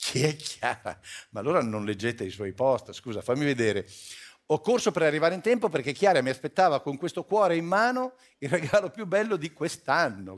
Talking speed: 195 wpm